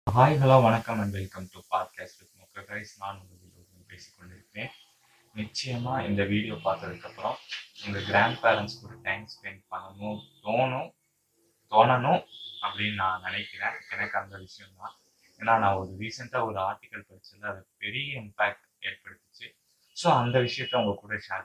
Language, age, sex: Tamil, 20-39, male